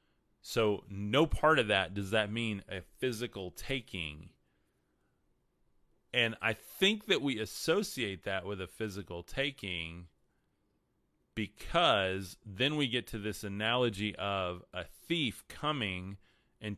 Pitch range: 95-120 Hz